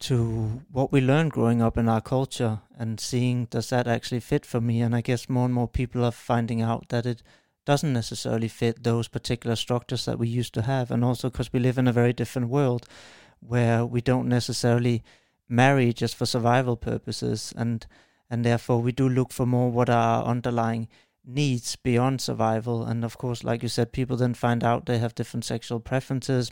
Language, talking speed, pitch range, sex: English, 200 wpm, 120-130 Hz, male